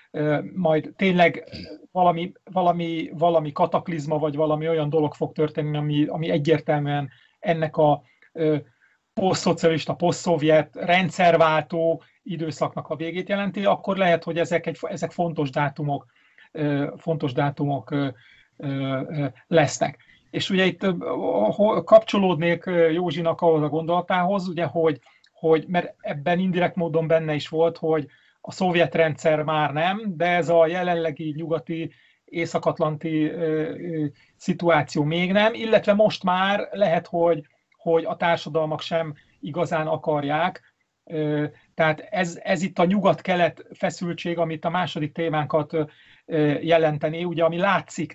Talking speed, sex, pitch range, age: 115 wpm, male, 155-175 Hz, 30-49